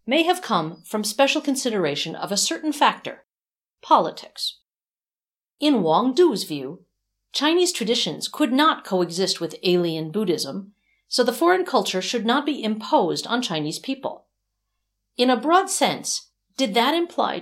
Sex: female